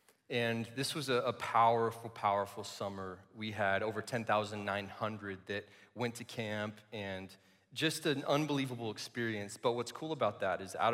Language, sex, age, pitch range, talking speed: English, male, 20-39, 105-120 Hz, 155 wpm